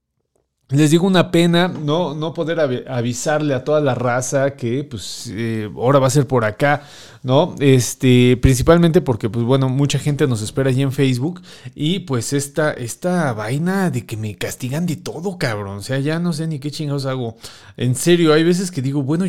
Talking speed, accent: 195 wpm, Mexican